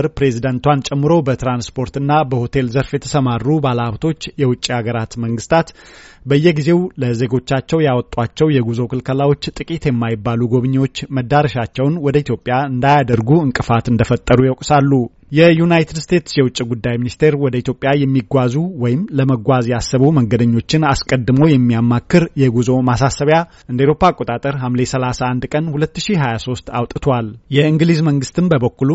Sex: male